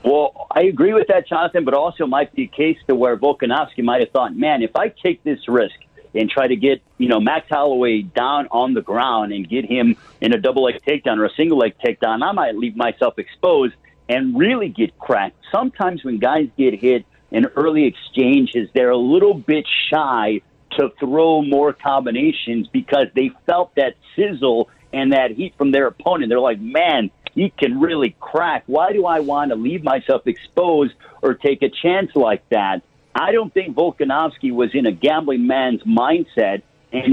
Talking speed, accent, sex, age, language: 190 wpm, American, male, 50-69, English